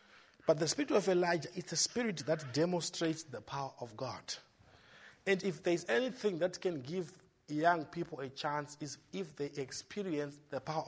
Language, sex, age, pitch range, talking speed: English, male, 50-69, 135-185 Hz, 170 wpm